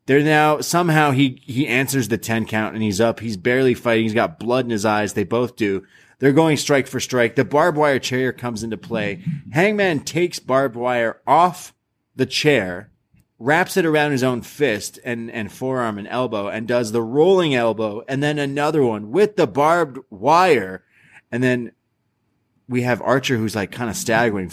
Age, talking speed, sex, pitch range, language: 30-49, 190 wpm, male, 115-150 Hz, English